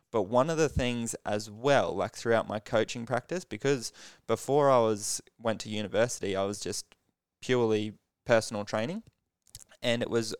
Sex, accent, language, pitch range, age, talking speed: male, Australian, English, 105-120 Hz, 20-39, 160 wpm